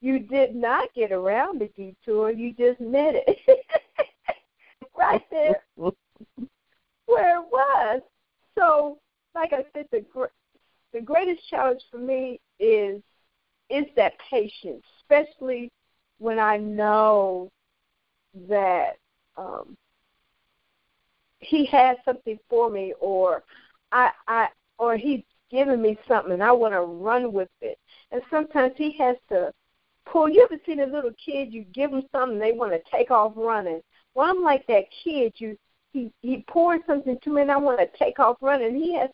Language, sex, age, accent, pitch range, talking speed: English, female, 50-69, American, 215-285 Hz, 155 wpm